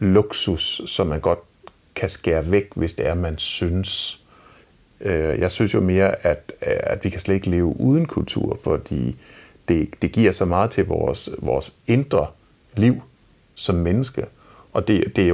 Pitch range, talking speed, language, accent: 90-125 Hz, 160 wpm, Danish, native